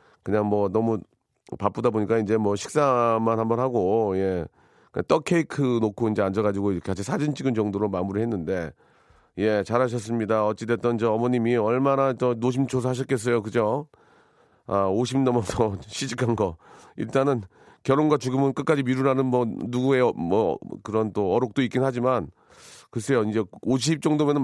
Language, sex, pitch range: Korean, male, 105-135 Hz